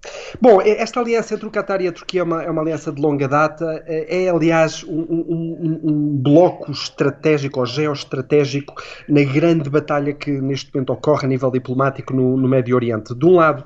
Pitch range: 140-165 Hz